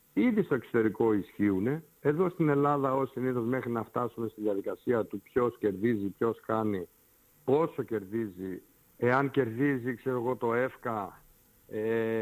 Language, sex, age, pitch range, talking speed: Greek, male, 50-69, 105-125 Hz, 135 wpm